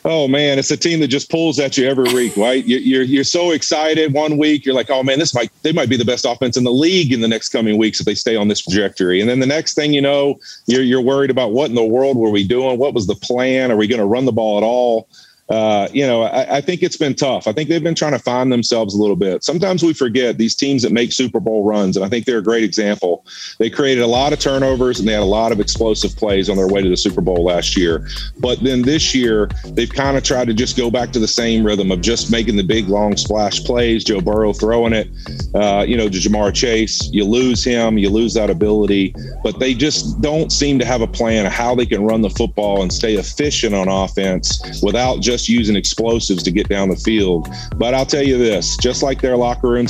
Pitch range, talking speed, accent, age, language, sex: 105-130 Hz, 260 wpm, American, 40-59, English, male